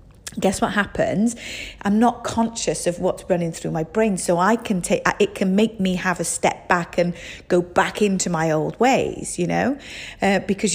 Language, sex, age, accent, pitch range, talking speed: English, female, 40-59, British, 175-220 Hz, 195 wpm